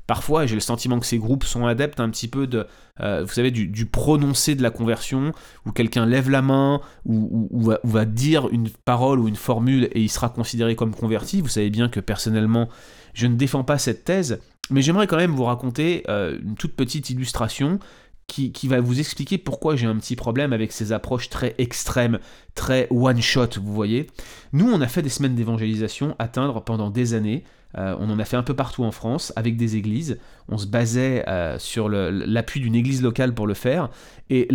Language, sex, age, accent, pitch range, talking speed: French, male, 30-49, French, 115-140 Hz, 210 wpm